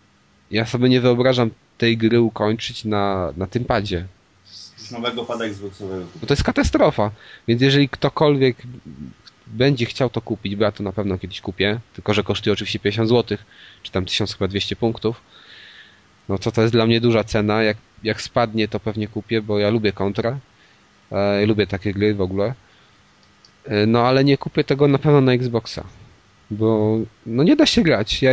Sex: male